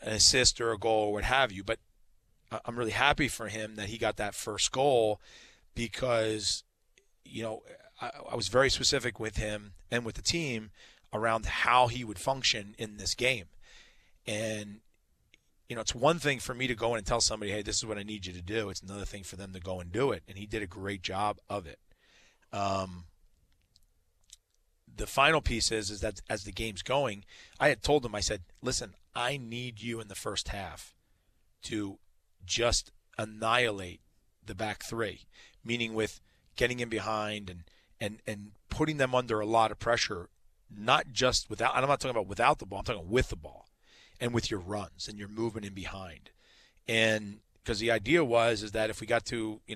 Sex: male